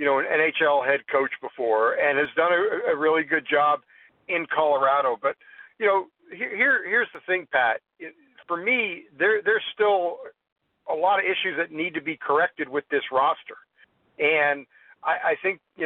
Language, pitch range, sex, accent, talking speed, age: English, 155-205 Hz, male, American, 180 wpm, 50-69